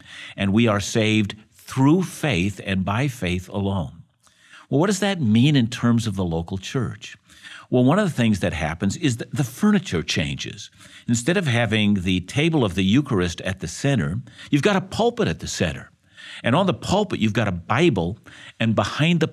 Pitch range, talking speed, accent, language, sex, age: 100-140 Hz, 190 wpm, American, English, male, 50-69